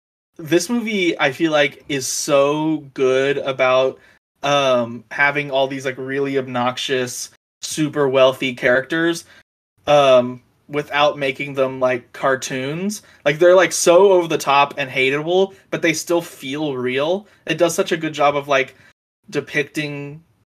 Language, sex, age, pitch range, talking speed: English, male, 20-39, 130-155 Hz, 140 wpm